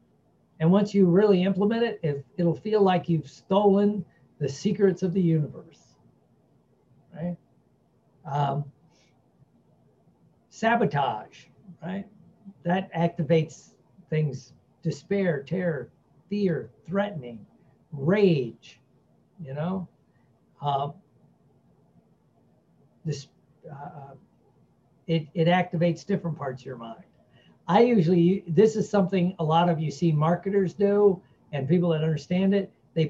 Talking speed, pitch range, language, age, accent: 110 wpm, 145-190 Hz, English, 50-69, American